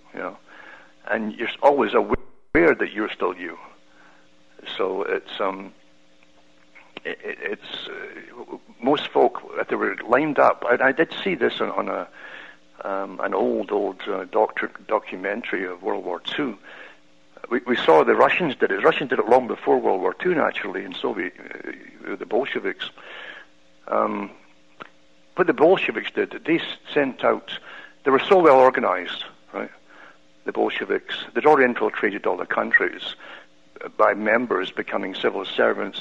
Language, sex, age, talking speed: English, male, 60-79, 155 wpm